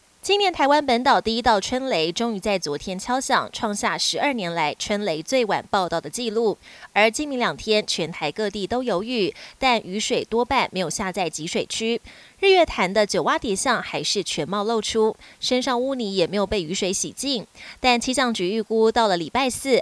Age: 20-39